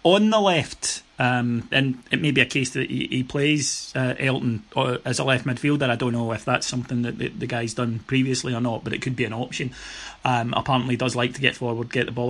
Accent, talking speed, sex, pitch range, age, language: British, 250 wpm, male, 125-145 Hz, 30-49, English